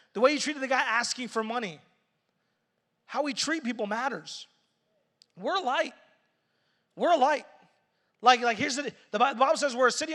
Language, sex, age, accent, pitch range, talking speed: English, male, 30-49, American, 190-245 Hz, 175 wpm